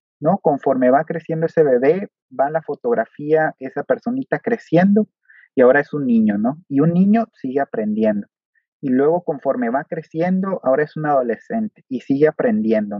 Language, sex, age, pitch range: Spanish, male, 30-49, 140-195 Hz